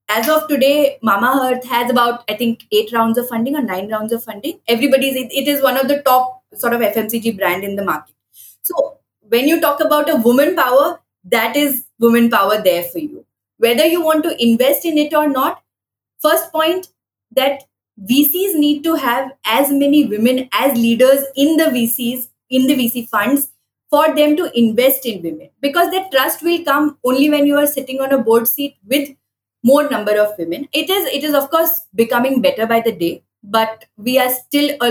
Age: 20-39